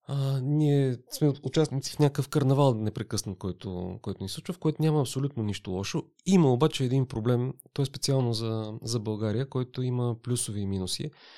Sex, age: male, 30-49